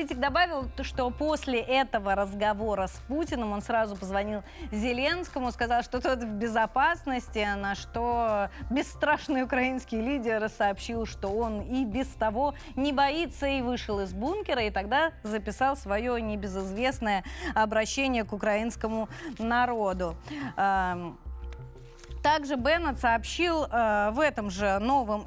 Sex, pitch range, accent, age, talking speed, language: female, 215-280 Hz, native, 20-39, 120 wpm, Russian